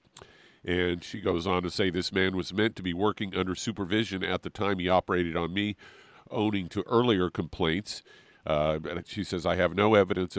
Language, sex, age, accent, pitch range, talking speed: English, male, 50-69, American, 90-100 Hz, 195 wpm